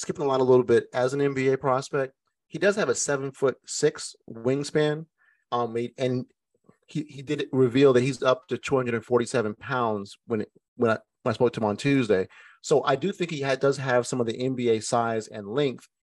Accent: American